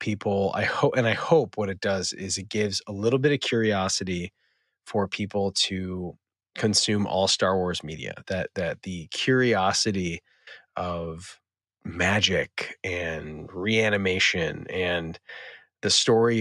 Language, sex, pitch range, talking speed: English, male, 95-110 Hz, 130 wpm